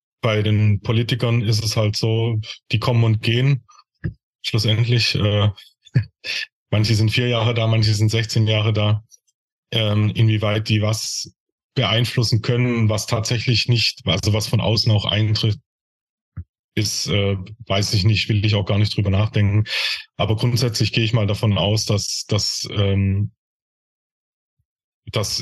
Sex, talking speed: male, 145 wpm